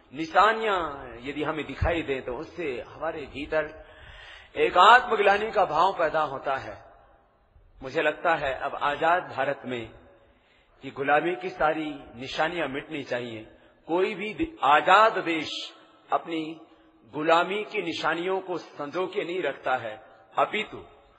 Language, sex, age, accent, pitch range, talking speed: Hindi, male, 50-69, native, 140-200 Hz, 125 wpm